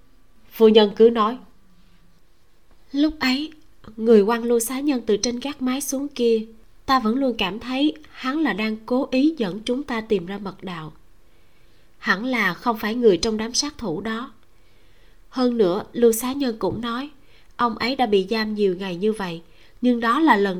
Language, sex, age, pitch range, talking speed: Vietnamese, female, 20-39, 195-250 Hz, 185 wpm